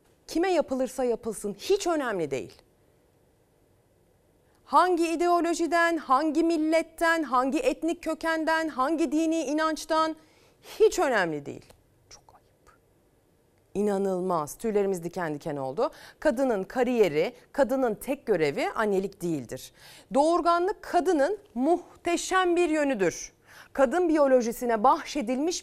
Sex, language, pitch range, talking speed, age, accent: female, Turkish, 195-320 Hz, 95 wpm, 40-59, native